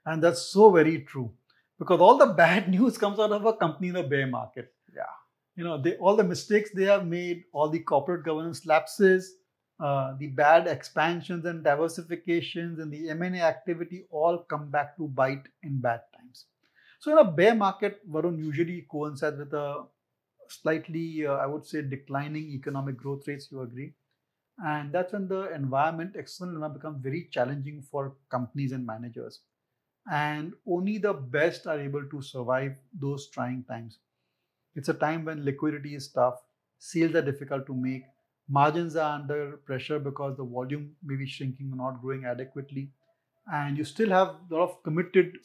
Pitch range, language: 135-170 Hz, English